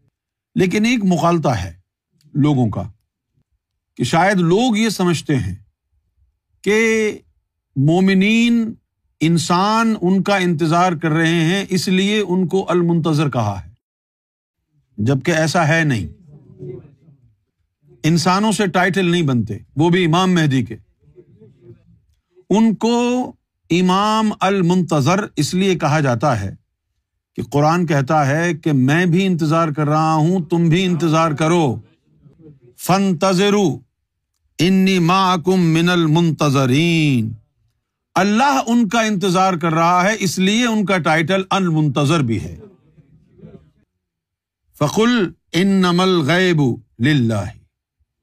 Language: Urdu